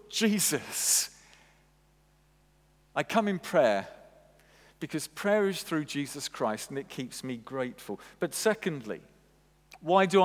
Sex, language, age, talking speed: male, English, 50-69, 115 wpm